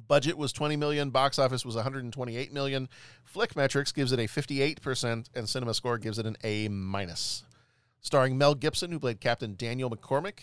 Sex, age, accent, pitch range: male, 40-59, American, 115-140 Hz